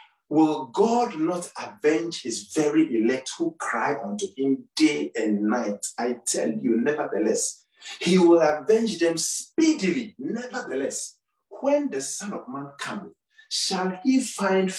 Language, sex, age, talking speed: English, male, 50-69, 135 wpm